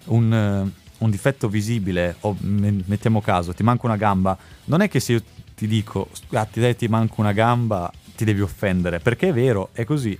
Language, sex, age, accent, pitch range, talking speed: Italian, male, 30-49, native, 95-110 Hz, 175 wpm